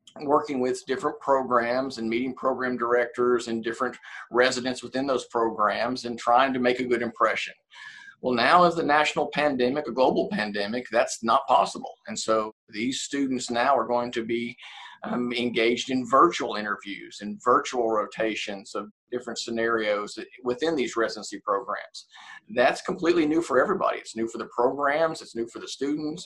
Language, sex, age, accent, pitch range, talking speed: English, male, 50-69, American, 115-135 Hz, 165 wpm